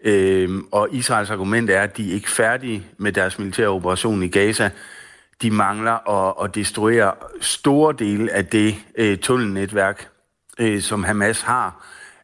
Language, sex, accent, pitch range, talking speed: Danish, male, native, 95-115 Hz, 135 wpm